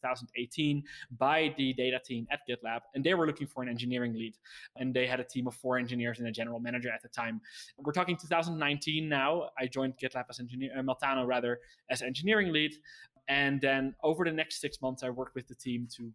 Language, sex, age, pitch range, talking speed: English, male, 20-39, 120-145 Hz, 215 wpm